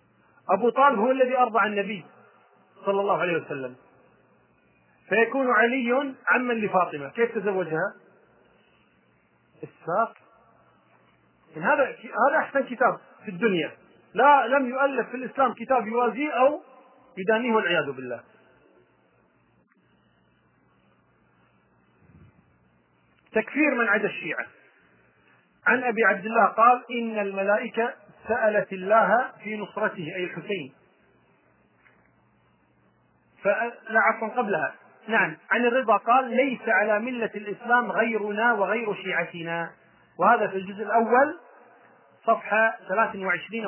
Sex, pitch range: male, 190-240 Hz